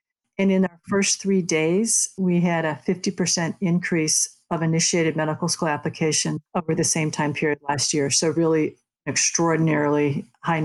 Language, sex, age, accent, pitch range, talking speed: English, female, 50-69, American, 160-190 Hz, 150 wpm